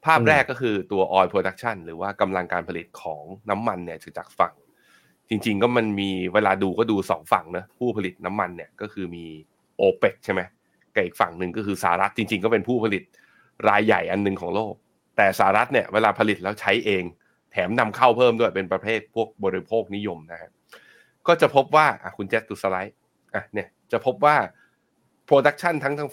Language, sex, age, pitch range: Thai, male, 20-39, 95-120 Hz